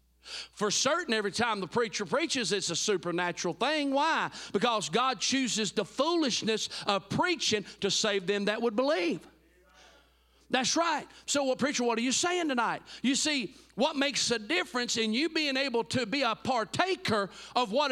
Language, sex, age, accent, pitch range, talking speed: English, male, 40-59, American, 220-280 Hz, 170 wpm